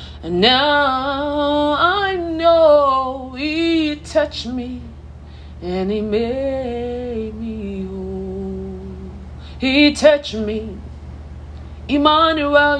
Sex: female